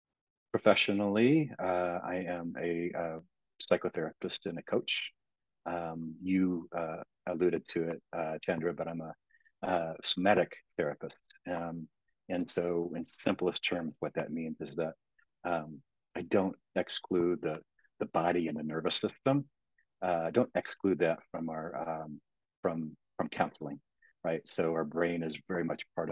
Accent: American